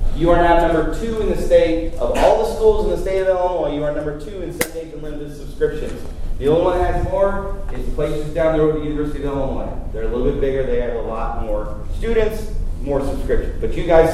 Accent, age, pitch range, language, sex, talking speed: American, 30-49, 145-190 Hz, English, male, 240 wpm